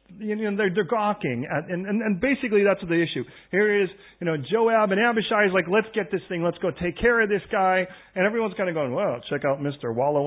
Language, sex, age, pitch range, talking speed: English, male, 40-59, 125-205 Hz, 245 wpm